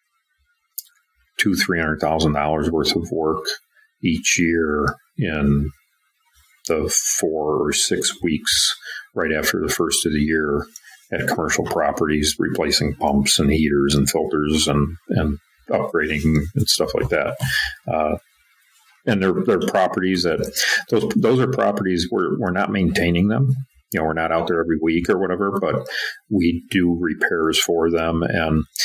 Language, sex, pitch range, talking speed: English, male, 75-100 Hz, 145 wpm